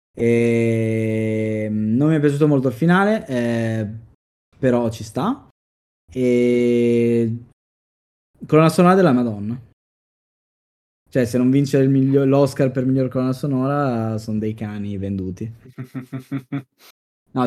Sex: male